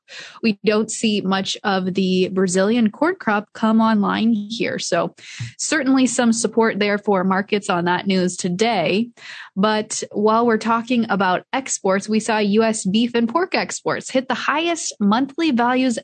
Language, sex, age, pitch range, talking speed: English, female, 20-39, 195-245 Hz, 155 wpm